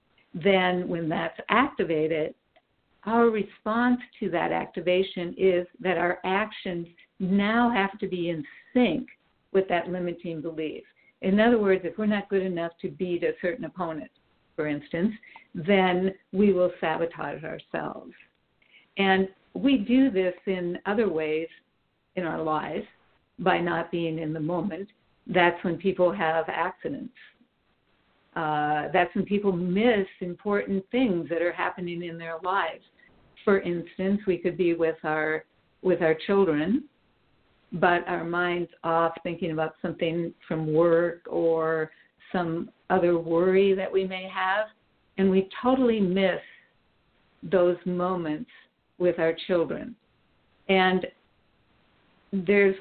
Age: 60-79